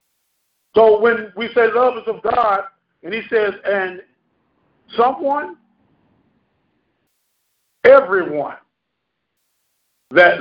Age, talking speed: 50-69, 85 wpm